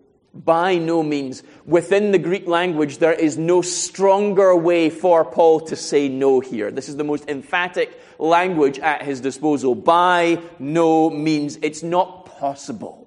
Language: English